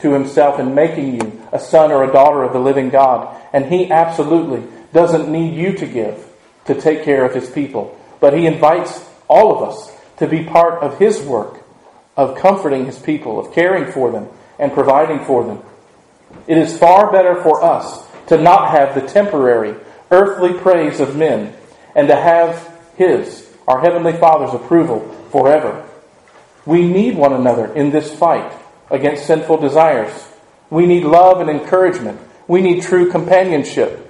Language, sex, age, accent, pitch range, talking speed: English, male, 40-59, American, 140-175 Hz, 165 wpm